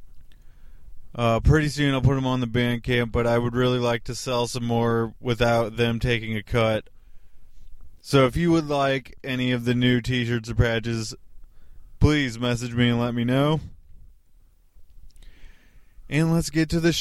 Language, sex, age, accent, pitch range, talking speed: English, male, 20-39, American, 90-130 Hz, 165 wpm